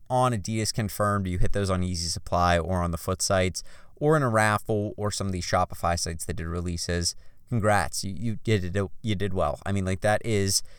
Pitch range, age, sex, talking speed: 90-115 Hz, 20-39, male, 220 wpm